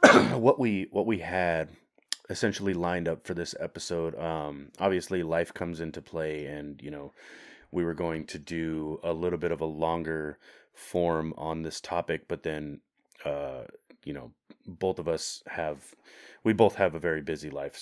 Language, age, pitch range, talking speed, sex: English, 30-49, 80-90 Hz, 170 wpm, male